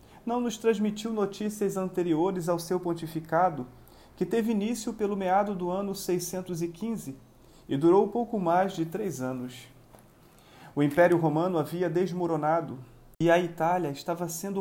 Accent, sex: Brazilian, male